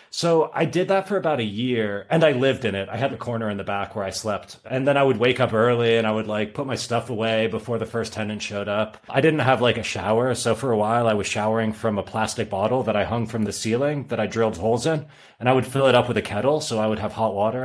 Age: 30-49